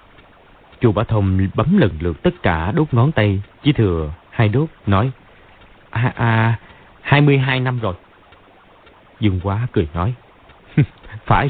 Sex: male